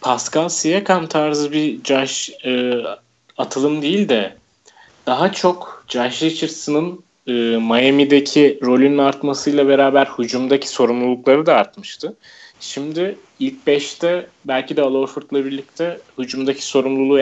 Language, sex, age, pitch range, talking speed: Turkish, male, 30-49, 125-150 Hz, 110 wpm